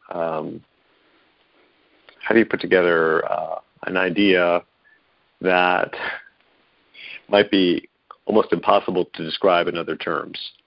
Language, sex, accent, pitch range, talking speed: English, male, American, 90-105 Hz, 105 wpm